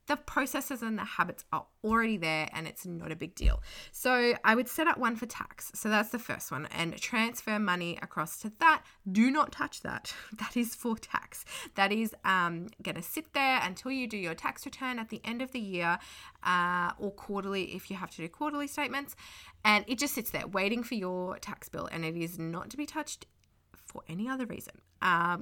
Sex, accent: female, Australian